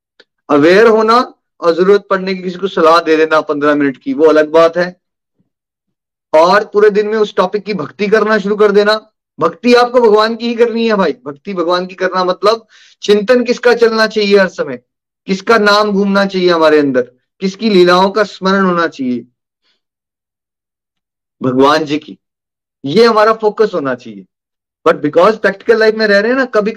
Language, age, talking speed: Hindi, 30-49, 175 wpm